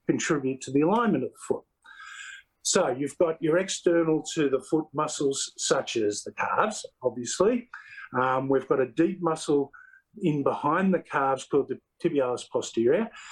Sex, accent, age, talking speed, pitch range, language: male, Australian, 50-69, 160 wpm, 140-180 Hz, English